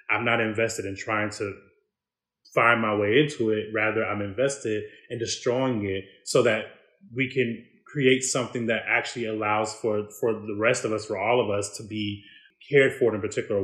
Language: English